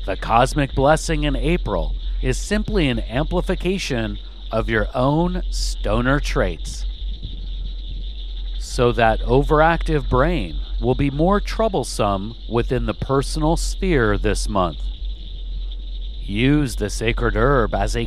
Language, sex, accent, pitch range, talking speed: English, male, American, 90-140 Hz, 115 wpm